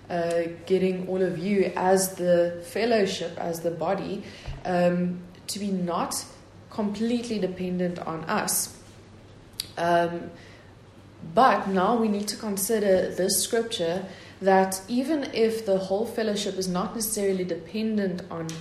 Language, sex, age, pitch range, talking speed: English, female, 20-39, 160-195 Hz, 125 wpm